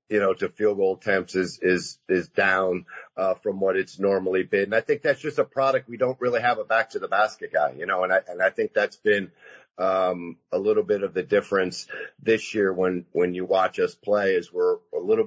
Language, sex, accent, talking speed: English, male, American, 240 wpm